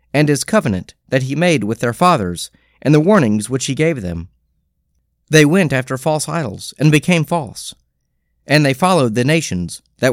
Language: English